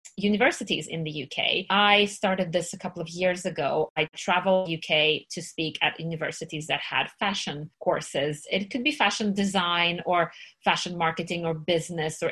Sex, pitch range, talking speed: female, 165-210 Hz, 165 wpm